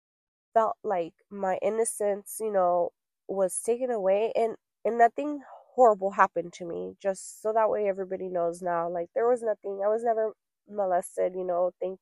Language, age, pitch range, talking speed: English, 20-39, 180-225 Hz, 170 wpm